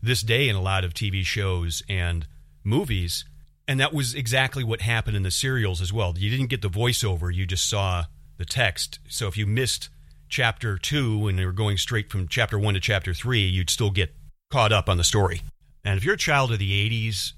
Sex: male